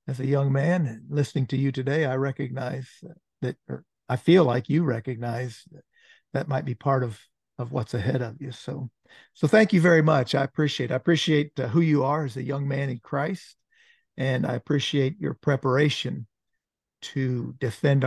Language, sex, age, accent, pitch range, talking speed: English, male, 50-69, American, 125-150 Hz, 180 wpm